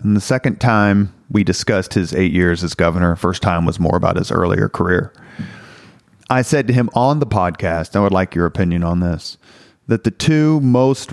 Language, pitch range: English, 95-115 Hz